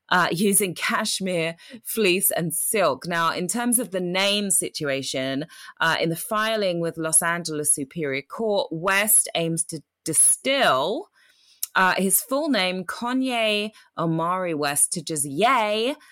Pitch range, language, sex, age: 155-215 Hz, English, female, 20-39